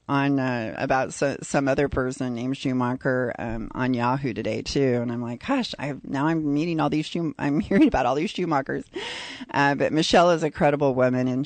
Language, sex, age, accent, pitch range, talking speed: English, female, 30-49, American, 120-140 Hz, 210 wpm